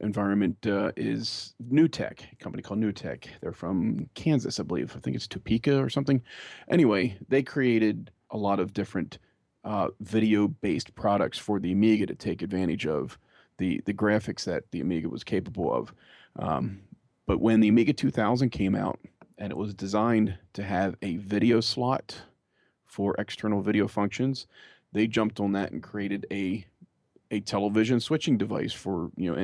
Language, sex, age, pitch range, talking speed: English, male, 30-49, 100-120 Hz, 165 wpm